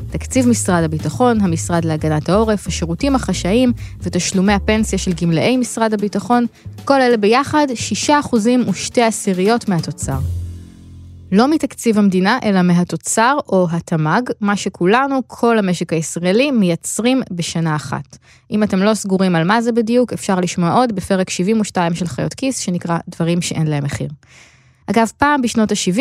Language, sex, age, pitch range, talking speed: Hebrew, female, 20-39, 170-230 Hz, 140 wpm